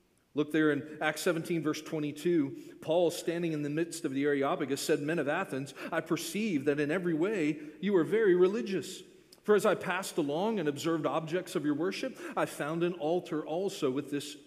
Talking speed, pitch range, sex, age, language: 195 wpm, 155-210 Hz, male, 40-59, English